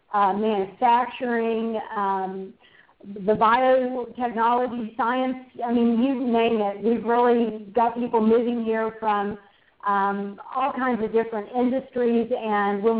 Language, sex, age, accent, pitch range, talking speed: English, female, 40-59, American, 215-245 Hz, 120 wpm